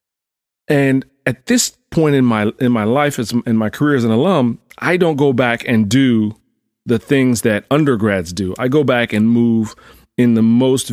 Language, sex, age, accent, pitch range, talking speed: English, male, 30-49, American, 110-130 Hz, 185 wpm